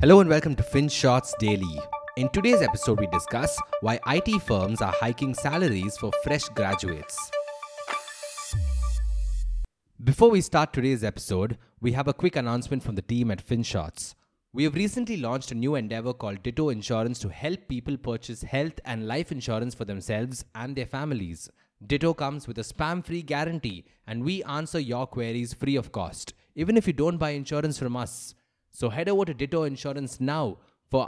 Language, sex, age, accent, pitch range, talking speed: English, male, 20-39, Indian, 110-155 Hz, 170 wpm